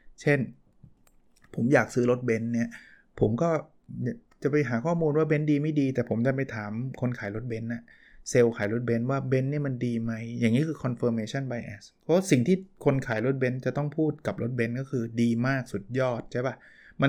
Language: Thai